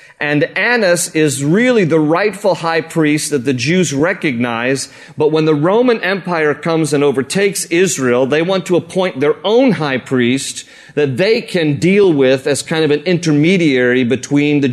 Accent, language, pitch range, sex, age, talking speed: American, English, 140-190 Hz, male, 40-59, 165 wpm